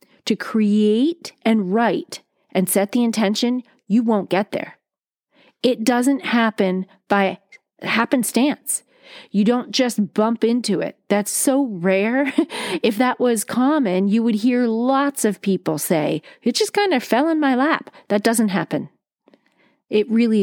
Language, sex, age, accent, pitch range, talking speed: English, female, 40-59, American, 185-250 Hz, 145 wpm